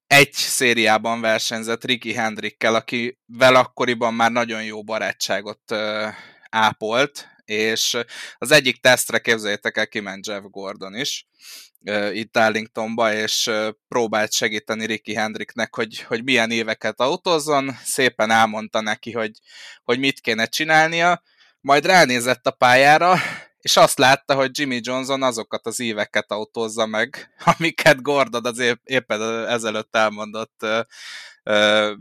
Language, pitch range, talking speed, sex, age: Hungarian, 110-125 Hz, 125 wpm, male, 20-39